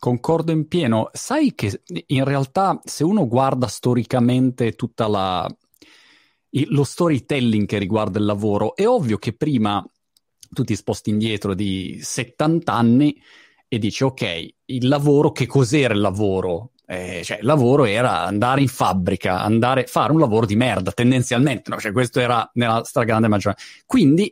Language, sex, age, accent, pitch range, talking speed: Italian, male, 30-49, native, 110-145 Hz, 150 wpm